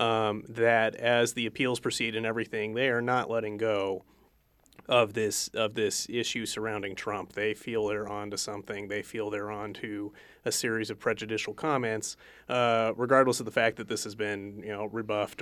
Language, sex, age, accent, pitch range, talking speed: English, male, 30-49, American, 105-120 Hz, 185 wpm